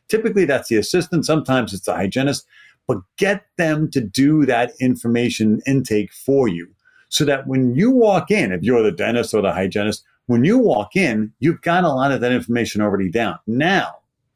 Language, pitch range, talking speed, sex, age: English, 115-165 Hz, 190 wpm, male, 50-69